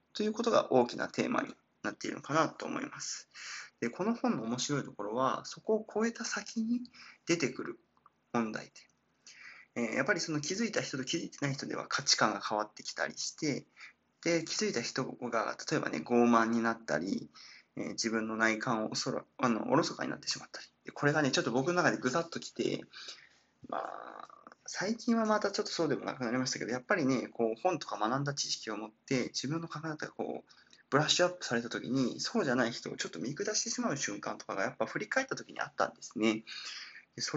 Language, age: Japanese, 20-39